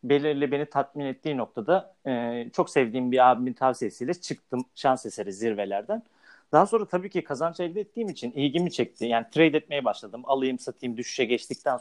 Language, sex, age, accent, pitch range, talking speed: Turkish, male, 40-59, native, 130-180 Hz, 170 wpm